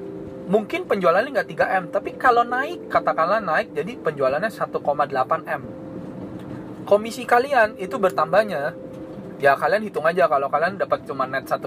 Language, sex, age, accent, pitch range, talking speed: Indonesian, male, 20-39, native, 145-205 Hz, 130 wpm